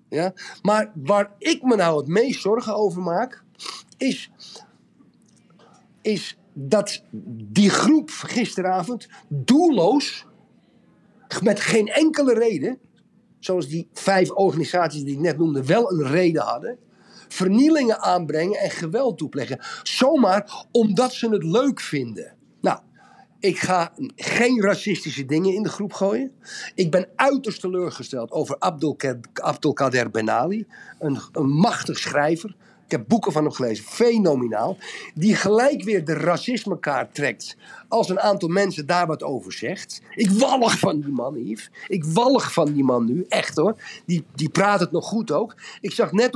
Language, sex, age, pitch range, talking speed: Dutch, male, 50-69, 165-225 Hz, 140 wpm